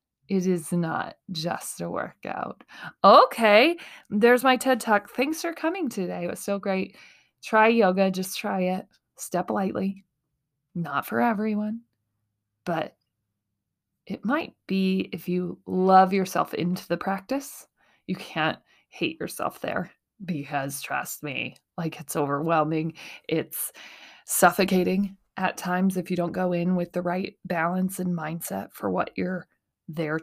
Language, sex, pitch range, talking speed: English, female, 180-230 Hz, 140 wpm